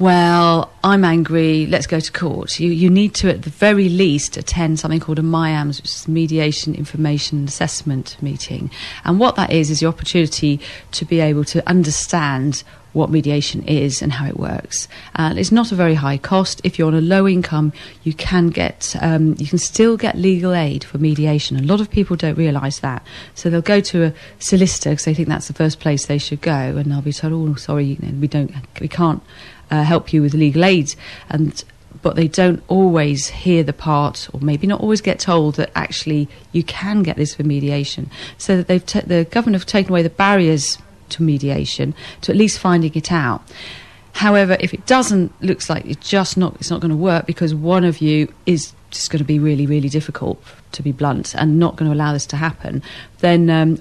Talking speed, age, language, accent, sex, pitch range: 210 wpm, 40-59, English, British, female, 145-175 Hz